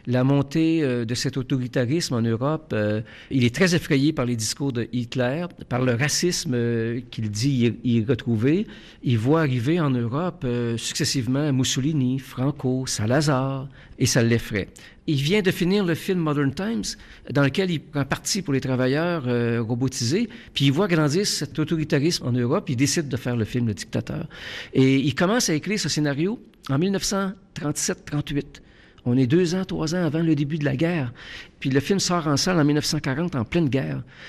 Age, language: 50-69, French